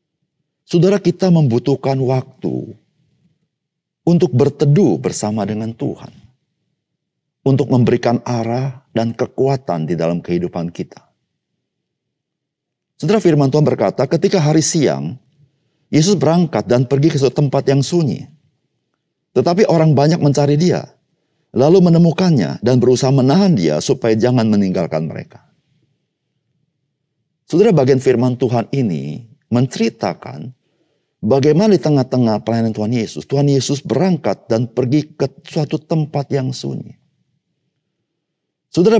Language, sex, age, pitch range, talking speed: Indonesian, male, 50-69, 120-155 Hz, 110 wpm